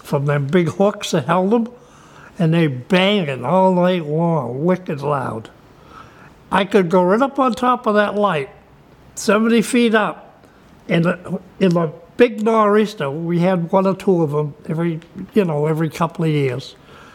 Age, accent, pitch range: 60-79, American, 160-210 Hz